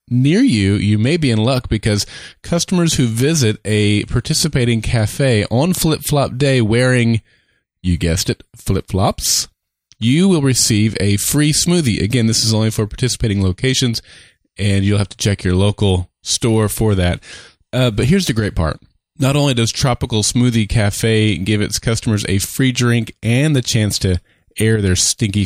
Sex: male